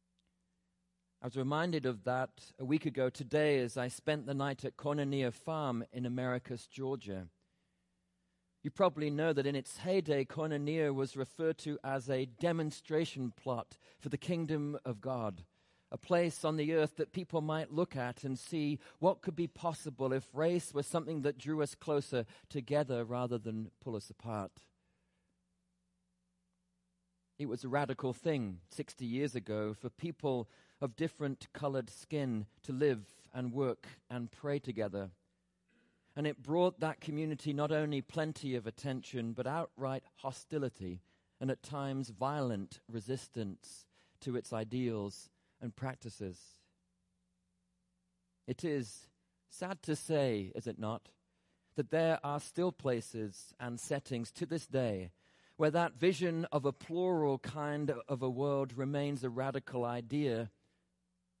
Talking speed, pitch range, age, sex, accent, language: 145 wpm, 120-155 Hz, 40-59, male, British, English